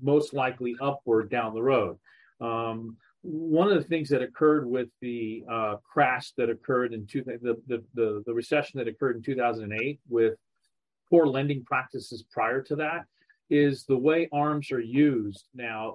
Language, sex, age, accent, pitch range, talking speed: English, male, 40-59, American, 115-150 Hz, 165 wpm